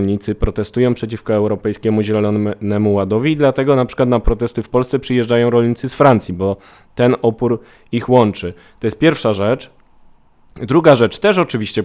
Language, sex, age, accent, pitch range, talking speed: Polish, male, 20-39, native, 100-120 Hz, 155 wpm